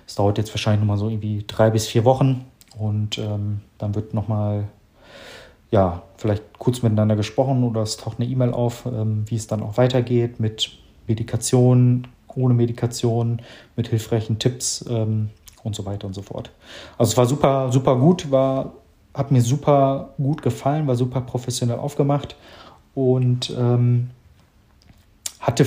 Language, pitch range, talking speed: German, 110-130 Hz, 155 wpm